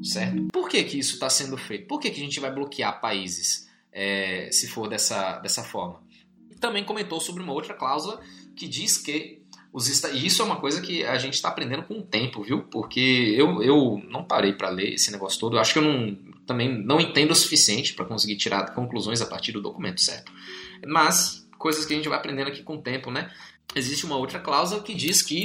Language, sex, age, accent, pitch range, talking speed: Portuguese, male, 20-39, Brazilian, 120-180 Hz, 210 wpm